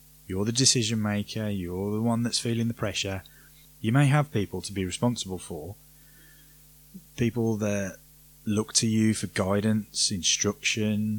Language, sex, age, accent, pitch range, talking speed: English, male, 30-49, British, 100-145 Hz, 145 wpm